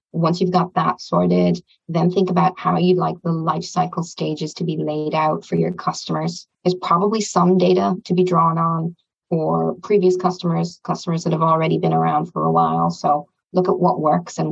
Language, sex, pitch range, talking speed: English, female, 155-185 Hz, 195 wpm